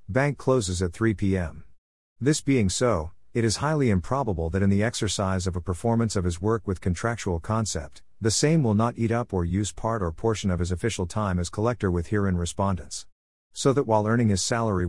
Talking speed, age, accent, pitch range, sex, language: 205 wpm, 50-69, American, 90-115 Hz, male, English